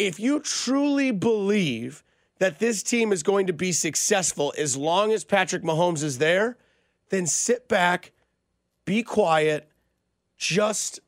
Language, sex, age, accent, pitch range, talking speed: English, male, 30-49, American, 150-205 Hz, 135 wpm